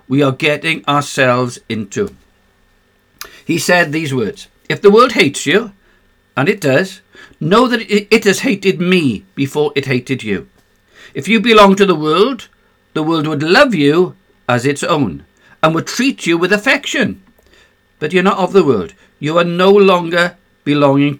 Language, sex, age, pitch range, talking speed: English, male, 60-79, 125-185 Hz, 165 wpm